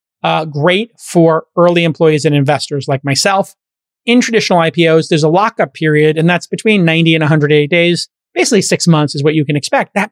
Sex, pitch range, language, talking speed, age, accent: male, 160-195 Hz, English, 190 wpm, 30-49, American